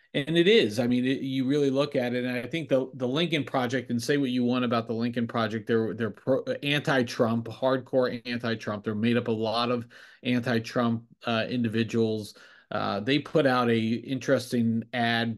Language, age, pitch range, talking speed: English, 40-59, 115-135 Hz, 190 wpm